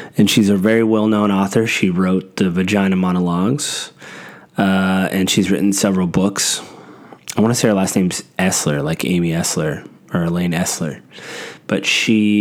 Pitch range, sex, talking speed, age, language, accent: 85-100 Hz, male, 160 wpm, 20-39, English, American